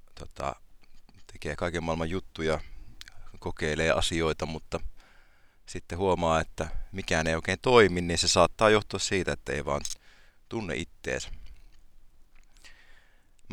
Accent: native